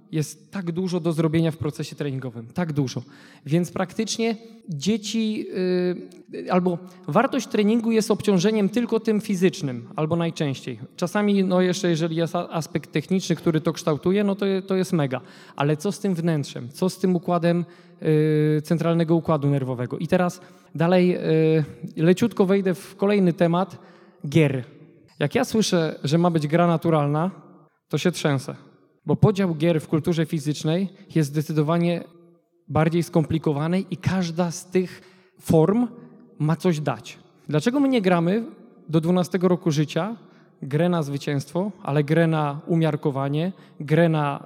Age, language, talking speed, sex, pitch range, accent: 20-39, Polish, 145 wpm, male, 155-185 Hz, native